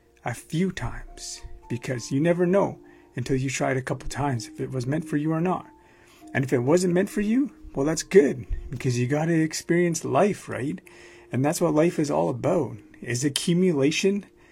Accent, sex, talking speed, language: American, male, 200 wpm, English